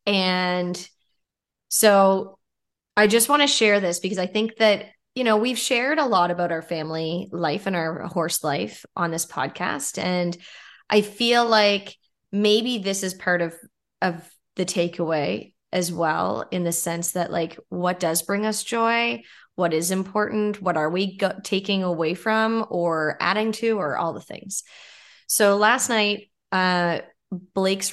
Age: 20-39